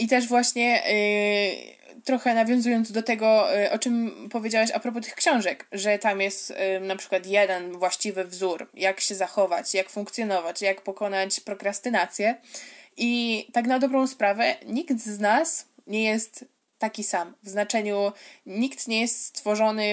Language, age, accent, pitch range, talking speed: Polish, 20-39, native, 200-235 Hz, 145 wpm